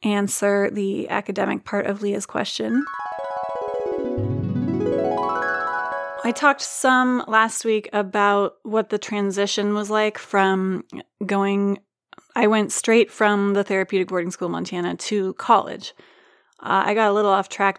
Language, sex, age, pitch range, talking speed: English, female, 30-49, 195-215 Hz, 130 wpm